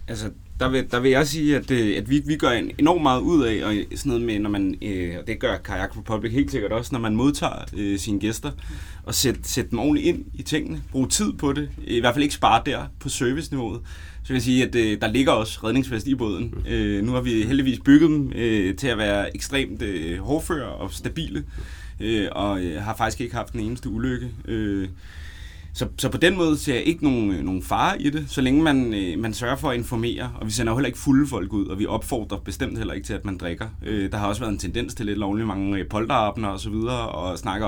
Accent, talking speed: native, 245 wpm